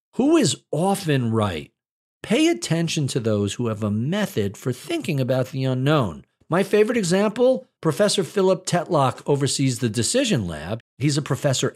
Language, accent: English, American